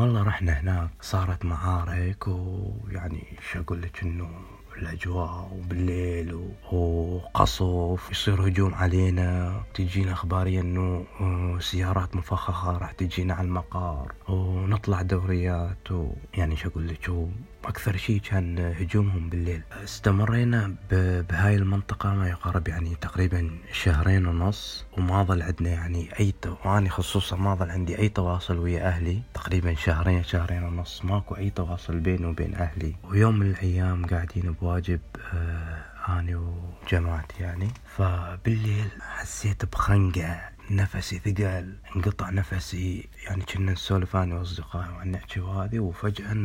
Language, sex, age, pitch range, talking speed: Arabic, male, 20-39, 85-95 Hz, 120 wpm